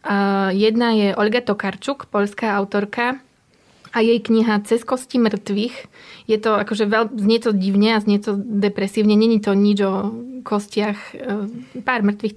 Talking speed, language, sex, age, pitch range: 140 wpm, Slovak, female, 20-39, 200-225 Hz